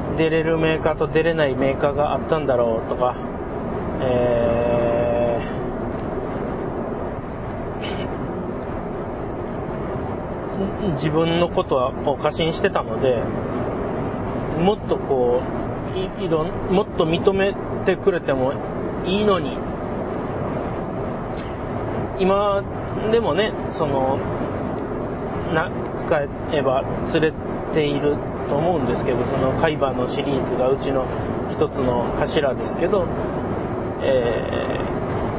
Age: 40-59